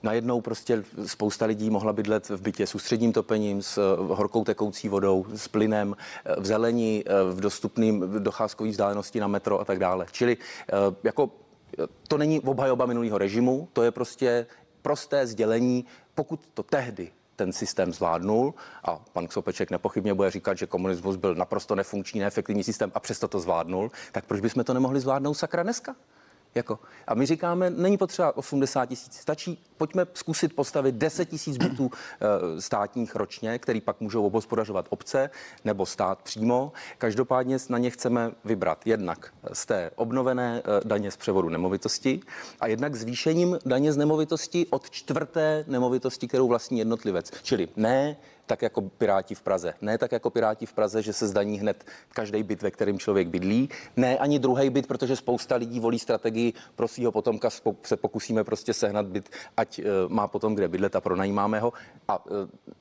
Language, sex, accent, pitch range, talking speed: Czech, male, native, 105-135 Hz, 165 wpm